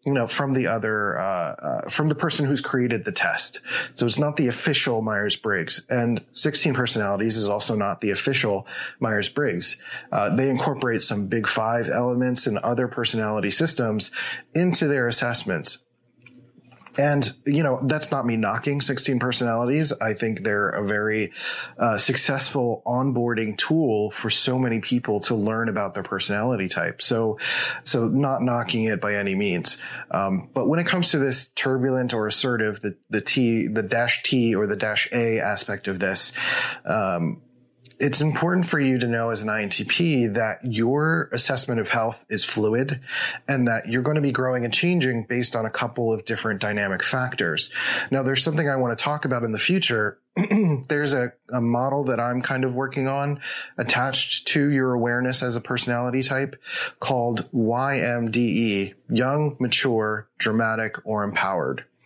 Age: 30-49